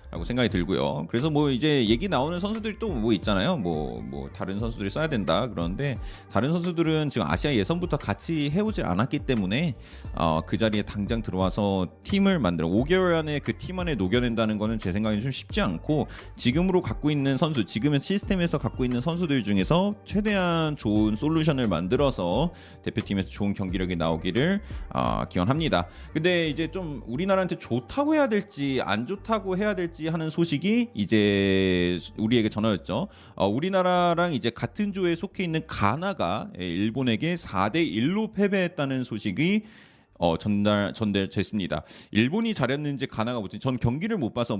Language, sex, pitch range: Korean, male, 100-170 Hz